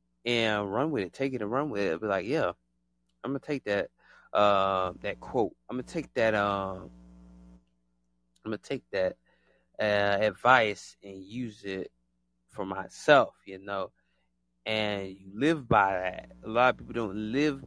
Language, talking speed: English, 175 wpm